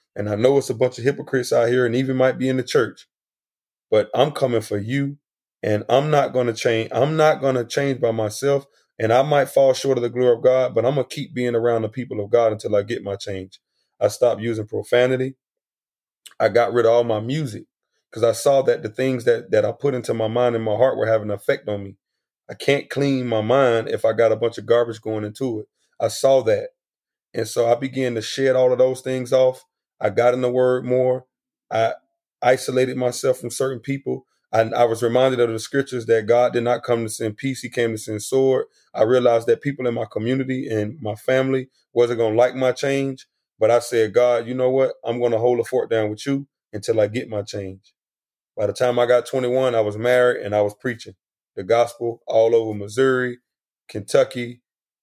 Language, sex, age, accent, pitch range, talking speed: English, male, 30-49, American, 115-130 Hz, 230 wpm